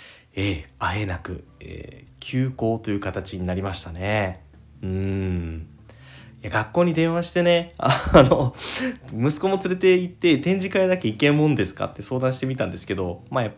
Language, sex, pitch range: Japanese, male, 95-130 Hz